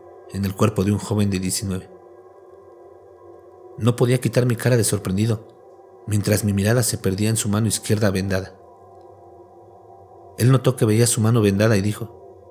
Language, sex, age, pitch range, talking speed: Spanish, male, 50-69, 95-115 Hz, 165 wpm